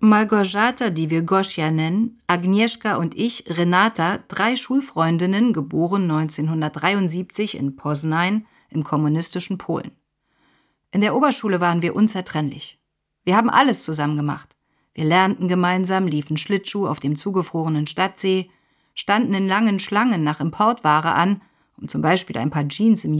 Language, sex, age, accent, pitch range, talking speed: German, female, 40-59, German, 160-220 Hz, 135 wpm